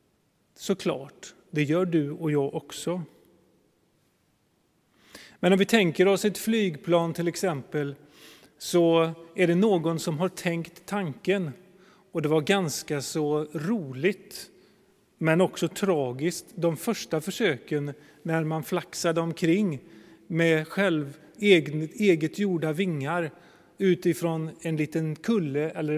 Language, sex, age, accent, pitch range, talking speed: Swedish, male, 30-49, native, 150-185 Hz, 120 wpm